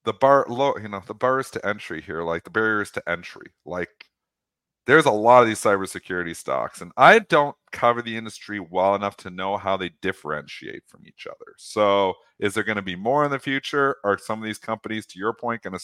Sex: male